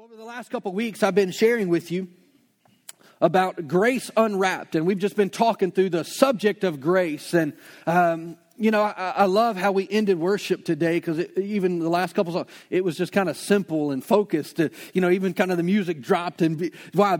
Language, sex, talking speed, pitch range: English, male, 215 wpm, 170-200 Hz